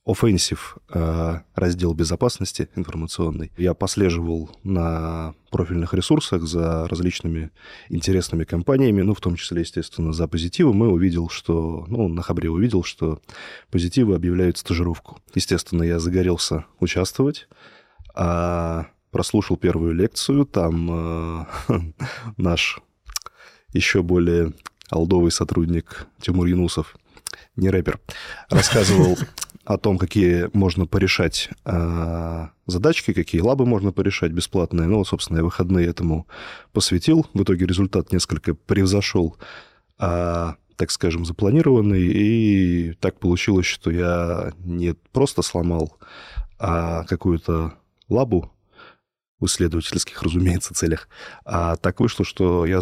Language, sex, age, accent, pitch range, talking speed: Russian, male, 20-39, native, 85-95 Hz, 110 wpm